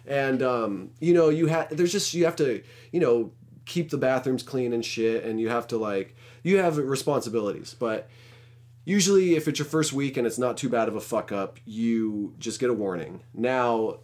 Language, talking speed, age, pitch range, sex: English, 210 wpm, 30-49, 110-130 Hz, male